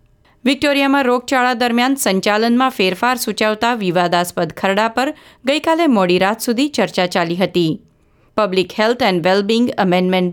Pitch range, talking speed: 190-255 Hz, 120 wpm